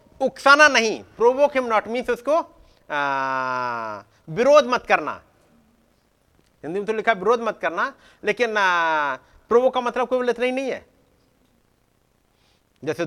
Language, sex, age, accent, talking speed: Hindi, male, 50-69, native, 120 wpm